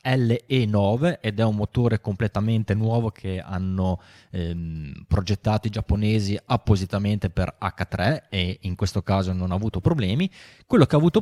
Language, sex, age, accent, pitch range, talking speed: Italian, male, 20-39, native, 95-120 Hz, 150 wpm